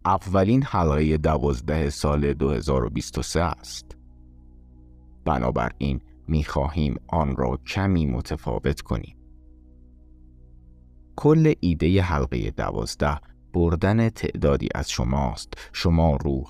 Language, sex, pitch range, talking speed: Persian, male, 65-85 Hz, 85 wpm